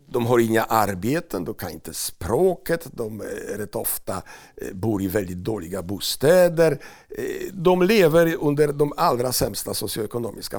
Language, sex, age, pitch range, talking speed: Swedish, male, 60-79, 105-170 Hz, 130 wpm